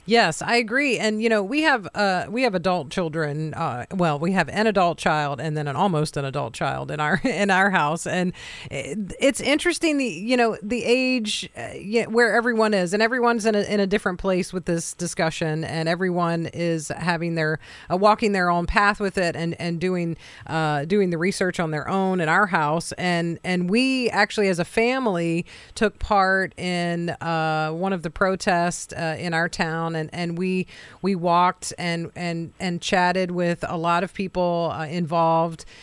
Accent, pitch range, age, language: American, 165-210 Hz, 40-59, English